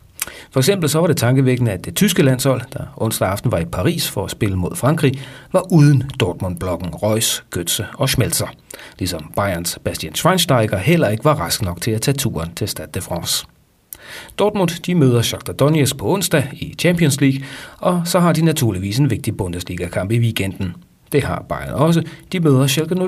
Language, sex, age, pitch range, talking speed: Danish, male, 40-59, 100-150 Hz, 185 wpm